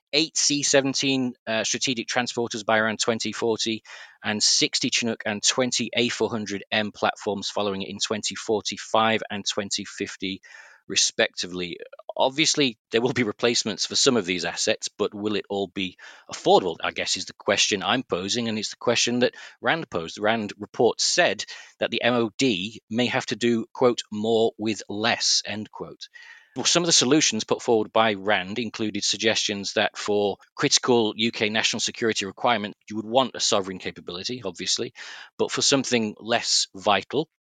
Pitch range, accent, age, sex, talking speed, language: 100-120 Hz, British, 40-59, male, 150 wpm, English